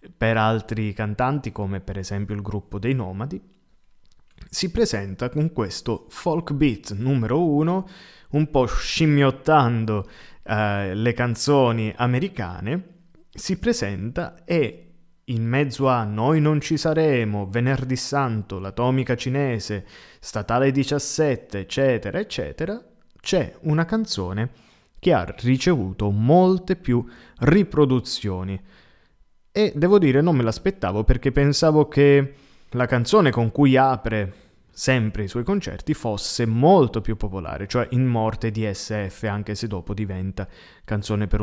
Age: 20-39